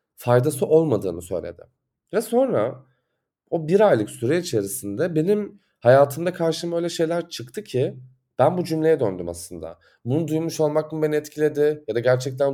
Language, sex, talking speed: Turkish, male, 150 wpm